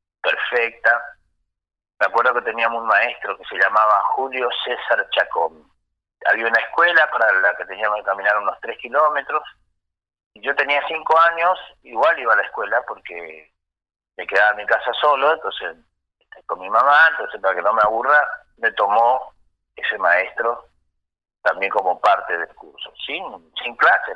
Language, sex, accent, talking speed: Spanish, male, Argentinian, 155 wpm